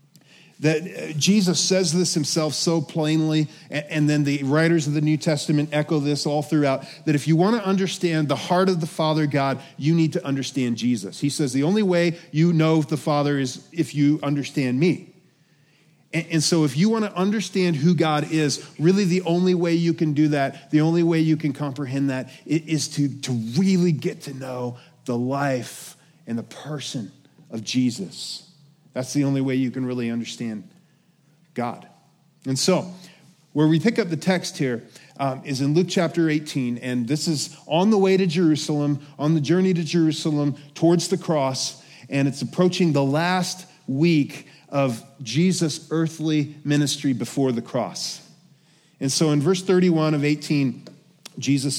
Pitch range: 140-170 Hz